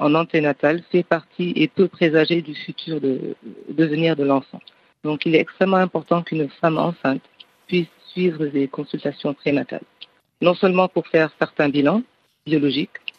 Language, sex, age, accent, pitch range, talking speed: French, female, 50-69, French, 145-175 Hz, 145 wpm